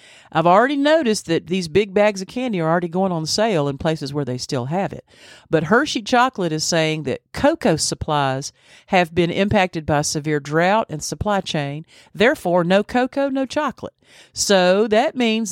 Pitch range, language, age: 155-225 Hz, English, 50-69